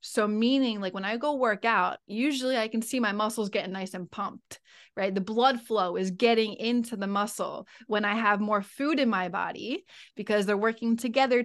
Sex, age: female, 20-39